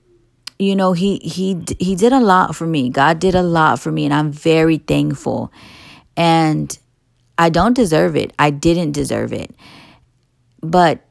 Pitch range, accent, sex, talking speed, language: 125-170 Hz, American, female, 160 wpm, English